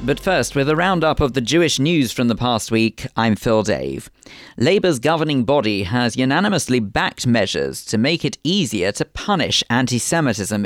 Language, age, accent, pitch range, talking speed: English, 40-59, British, 110-145 Hz, 175 wpm